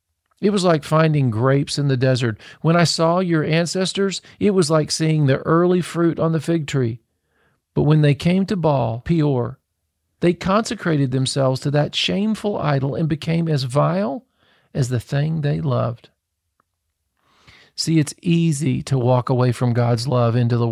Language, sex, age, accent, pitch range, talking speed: English, male, 40-59, American, 120-160 Hz, 170 wpm